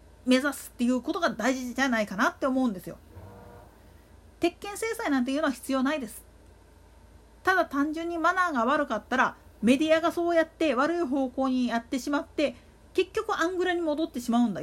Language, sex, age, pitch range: Japanese, female, 40-59, 220-335 Hz